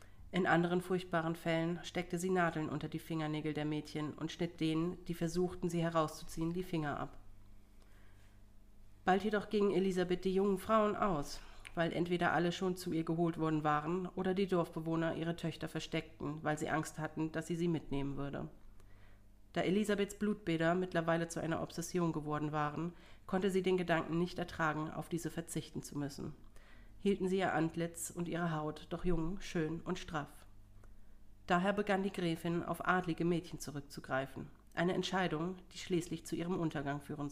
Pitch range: 150-180 Hz